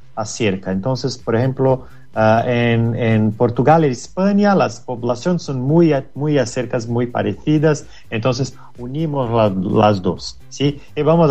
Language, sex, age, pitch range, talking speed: Spanish, male, 30-49, 110-150 Hz, 140 wpm